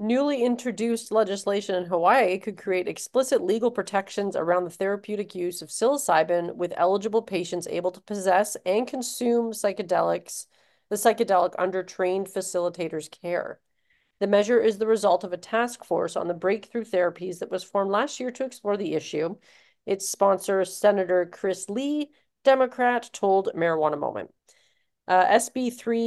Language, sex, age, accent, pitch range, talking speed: English, female, 40-59, American, 180-220 Hz, 145 wpm